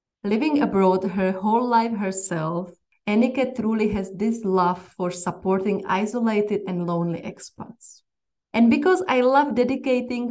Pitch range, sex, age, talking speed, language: 185-220 Hz, female, 20-39, 130 wpm, English